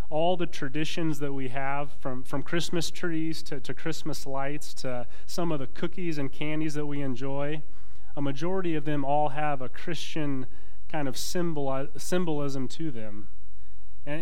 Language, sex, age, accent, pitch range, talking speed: English, male, 30-49, American, 120-150 Hz, 160 wpm